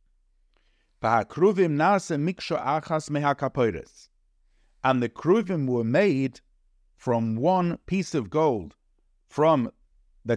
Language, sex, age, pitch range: English, male, 50-69, 115-175 Hz